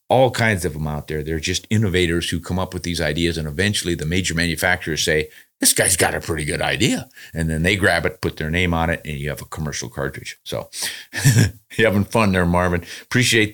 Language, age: English, 40-59